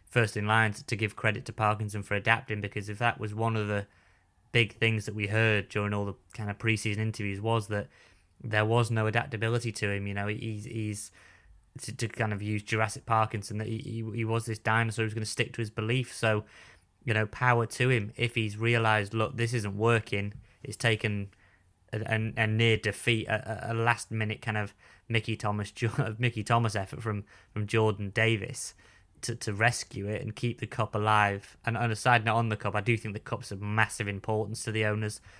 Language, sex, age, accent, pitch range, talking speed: English, male, 20-39, British, 105-115 Hz, 210 wpm